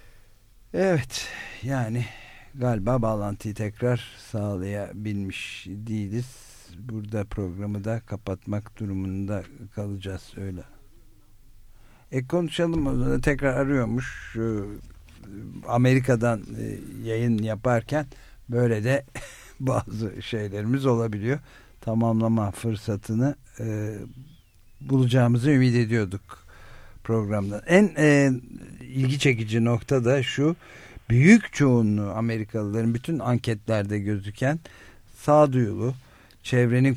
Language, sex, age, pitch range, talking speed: Turkish, male, 60-79, 105-130 Hz, 80 wpm